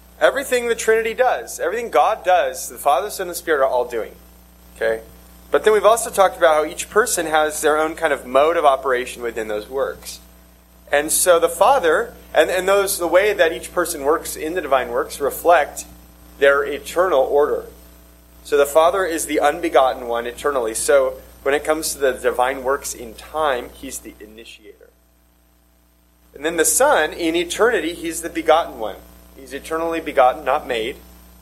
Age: 30-49